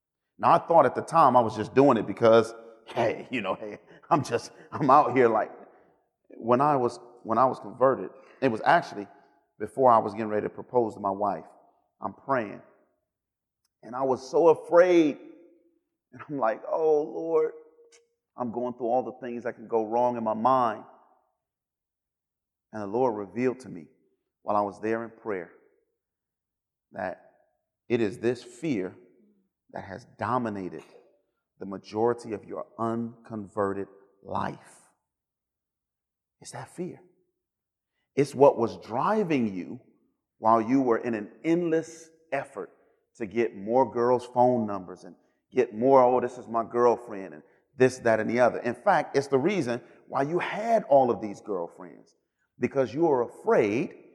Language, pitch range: English, 110-150 Hz